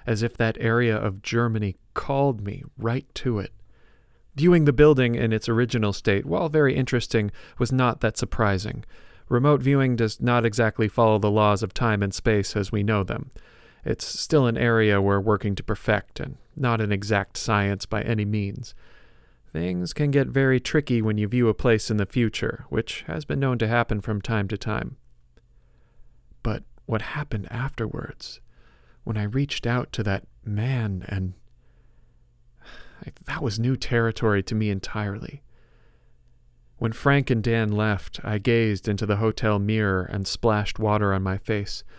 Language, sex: English, male